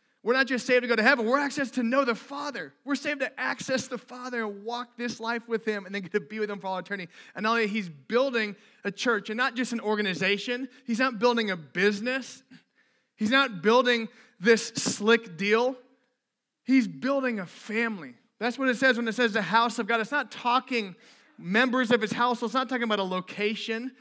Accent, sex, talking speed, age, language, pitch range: American, male, 215 wpm, 30-49, English, 205-245 Hz